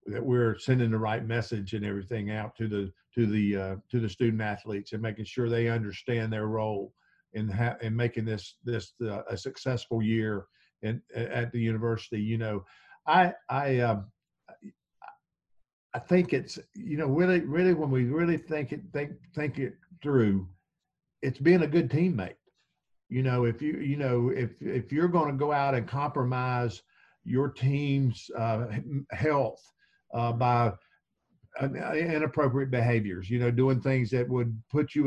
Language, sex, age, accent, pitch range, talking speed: English, male, 50-69, American, 115-145 Hz, 165 wpm